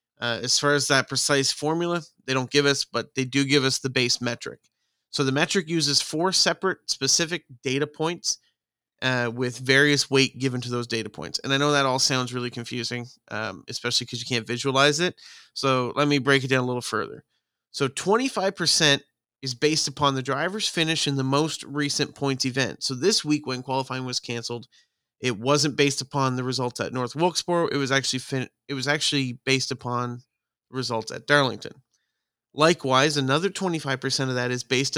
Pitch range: 125-145 Hz